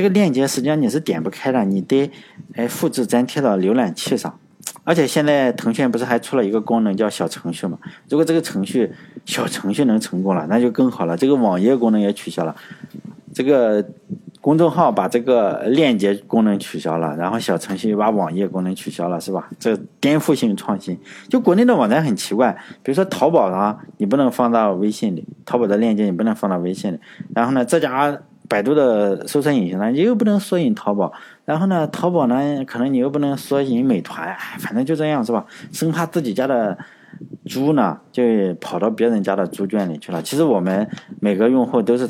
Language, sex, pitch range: Chinese, male, 100-160 Hz